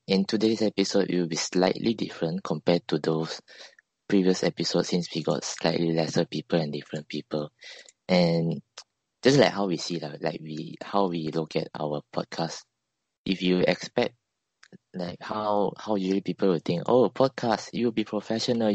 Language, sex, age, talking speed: English, male, 20-39, 165 wpm